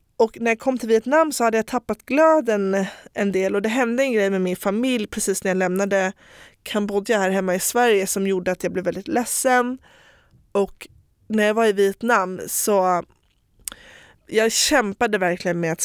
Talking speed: 185 wpm